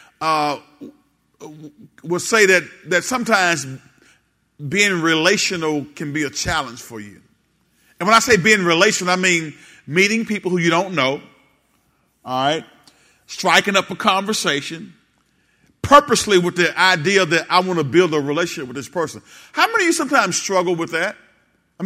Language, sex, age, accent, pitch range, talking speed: English, male, 40-59, American, 155-195 Hz, 160 wpm